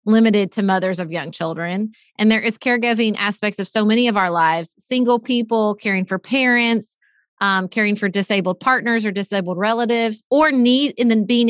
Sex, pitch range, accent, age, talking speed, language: female, 185-235 Hz, American, 30-49, 185 wpm, English